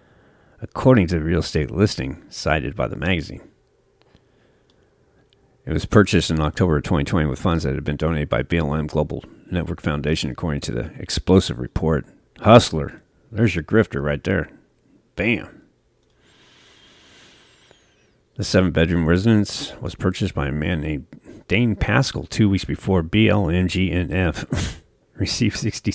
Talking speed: 130 wpm